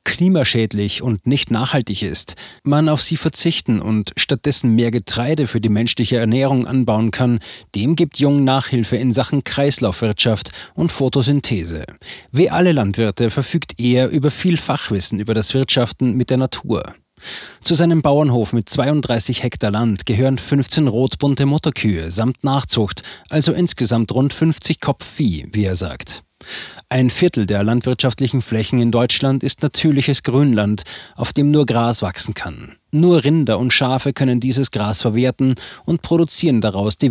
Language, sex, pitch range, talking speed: German, male, 110-140 Hz, 145 wpm